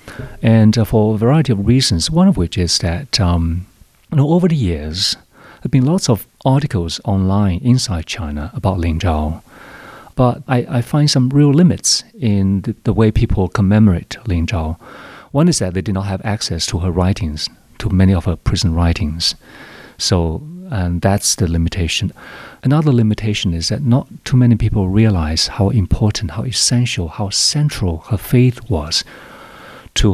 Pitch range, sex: 90-115 Hz, male